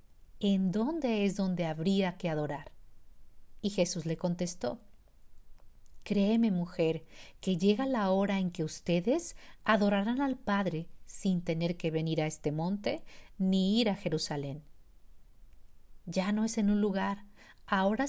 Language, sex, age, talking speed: Spanish, female, 50-69, 135 wpm